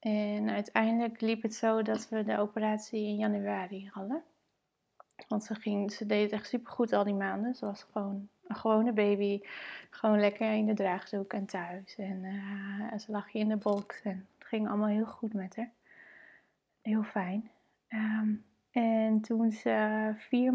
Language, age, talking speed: Dutch, 20-39, 170 wpm